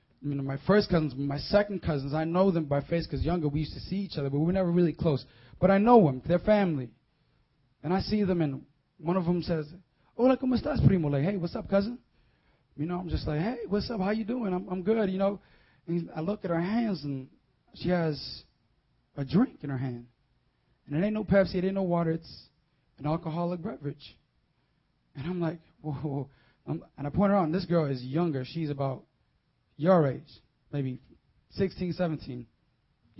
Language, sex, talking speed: English, male, 210 wpm